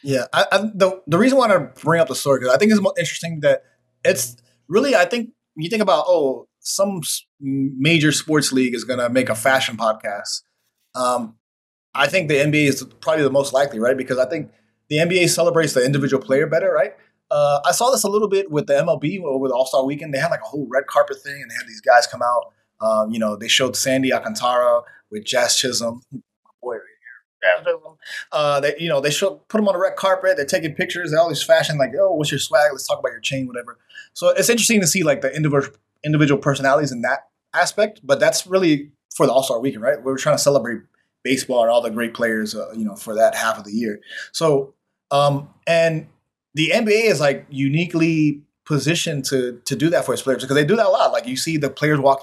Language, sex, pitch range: English, male, 130-170 Hz